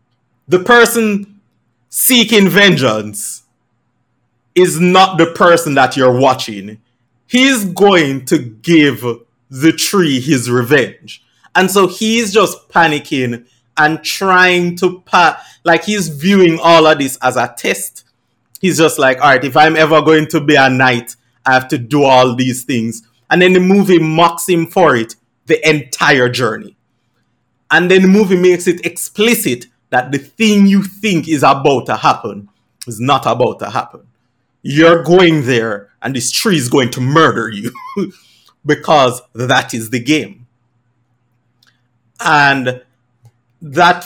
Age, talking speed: 30-49, 145 wpm